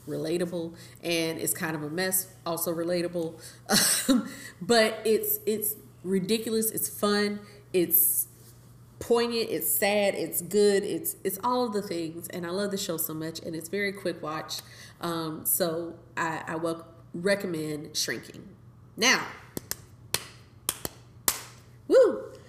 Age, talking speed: 30-49, 130 wpm